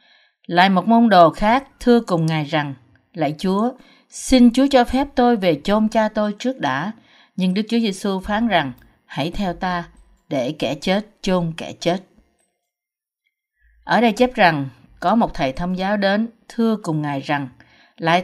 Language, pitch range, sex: Vietnamese, 165-230 Hz, female